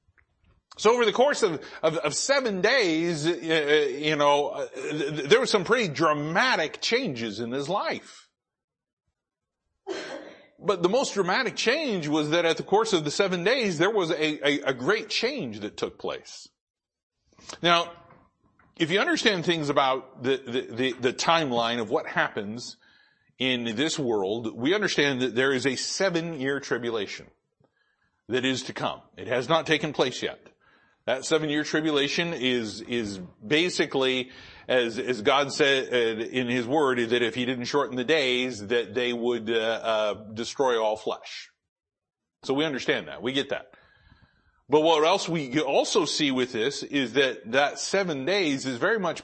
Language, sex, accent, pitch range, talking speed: English, male, American, 125-170 Hz, 160 wpm